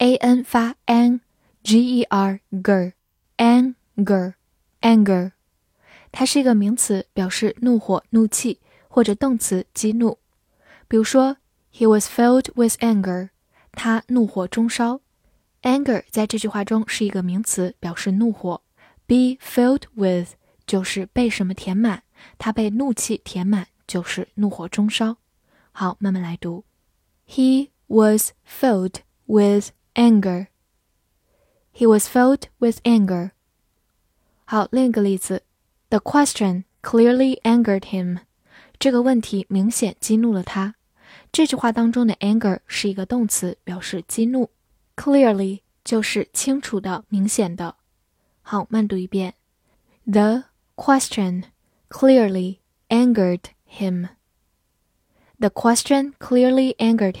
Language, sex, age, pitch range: Chinese, female, 10-29, 190-240 Hz